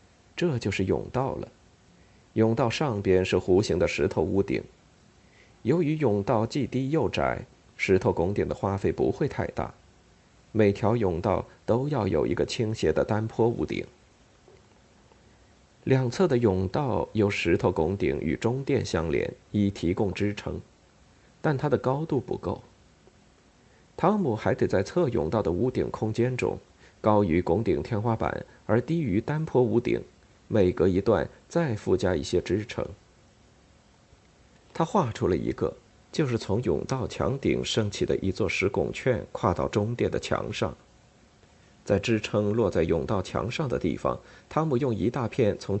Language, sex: Chinese, male